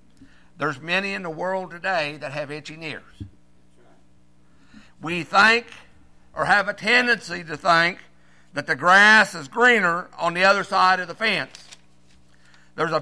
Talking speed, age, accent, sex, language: 145 wpm, 60-79, American, male, English